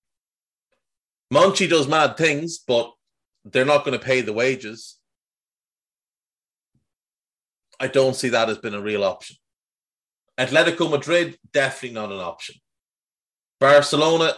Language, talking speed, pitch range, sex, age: English, 115 wpm, 115-155 Hz, male, 30-49